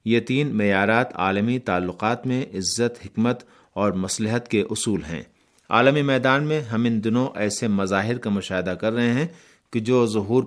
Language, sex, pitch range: Urdu, male, 100-120 Hz